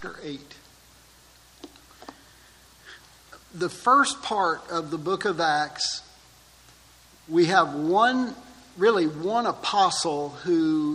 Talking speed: 90 wpm